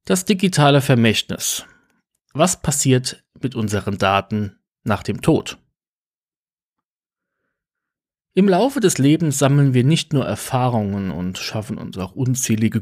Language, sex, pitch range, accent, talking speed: German, male, 110-140 Hz, German, 115 wpm